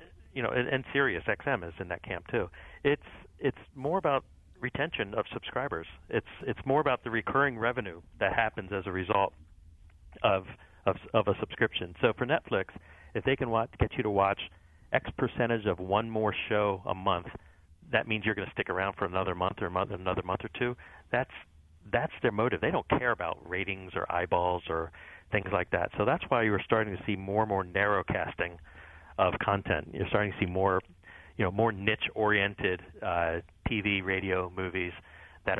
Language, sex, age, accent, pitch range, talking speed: English, male, 40-59, American, 85-105 Hz, 190 wpm